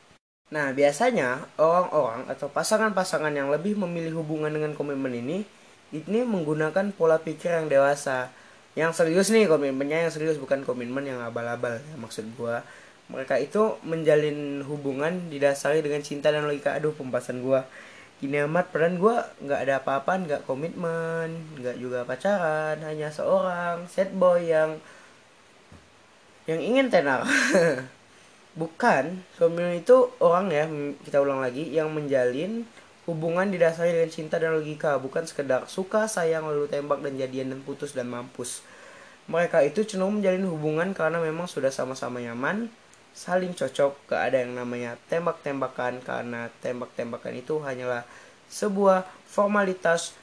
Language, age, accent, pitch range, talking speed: Indonesian, 20-39, native, 140-175 Hz, 135 wpm